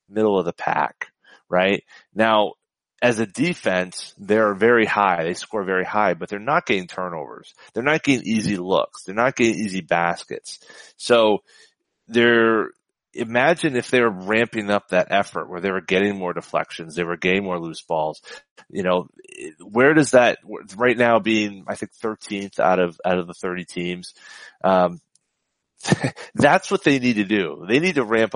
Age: 30-49